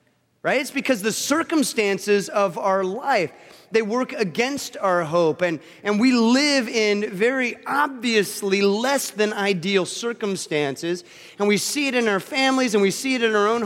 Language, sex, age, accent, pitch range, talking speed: English, male, 30-49, American, 190-245 Hz, 165 wpm